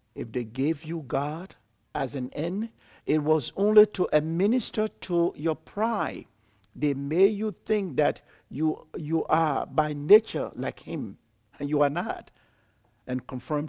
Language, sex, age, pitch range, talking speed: English, male, 60-79, 120-180 Hz, 150 wpm